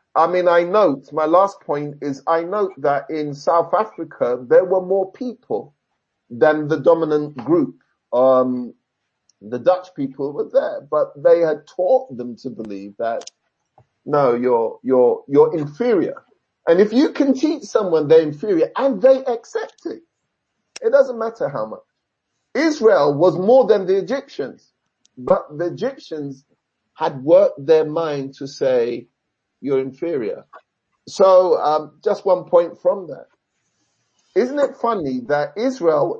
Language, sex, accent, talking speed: English, male, British, 145 wpm